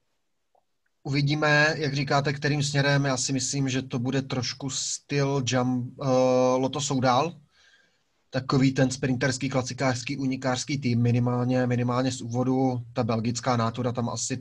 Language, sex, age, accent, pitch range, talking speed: Czech, male, 20-39, native, 120-135 Hz, 130 wpm